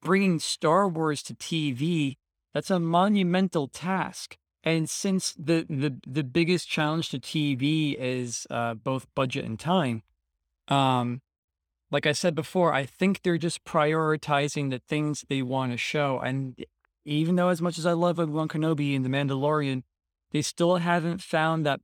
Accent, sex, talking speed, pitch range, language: American, male, 160 wpm, 135-165 Hz, English